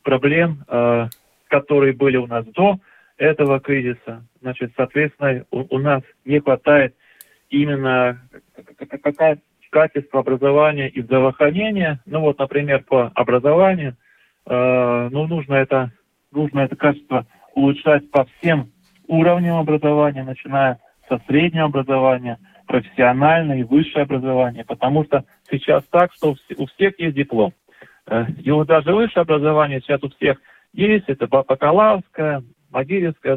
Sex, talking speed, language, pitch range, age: male, 115 wpm, Russian, 130-155 Hz, 20-39